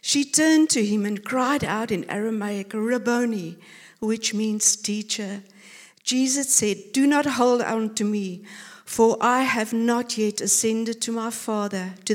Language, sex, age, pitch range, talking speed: English, female, 60-79, 200-230 Hz, 155 wpm